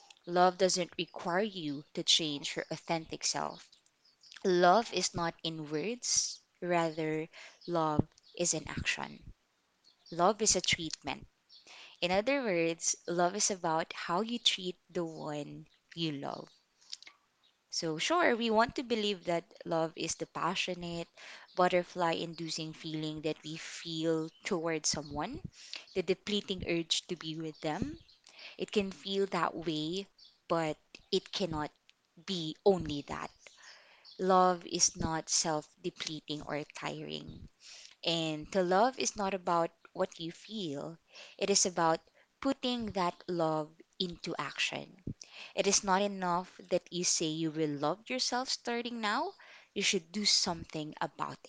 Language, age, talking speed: English, 20-39, 130 wpm